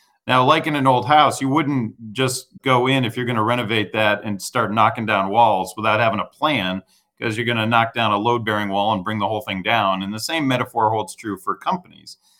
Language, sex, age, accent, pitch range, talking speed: English, male, 40-59, American, 105-130 Hz, 240 wpm